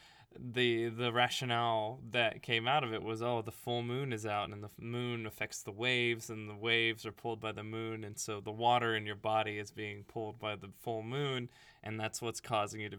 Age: 20-39